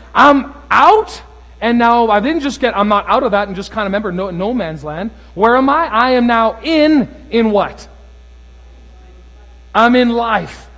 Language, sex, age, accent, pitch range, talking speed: English, male, 40-59, American, 150-235 Hz, 185 wpm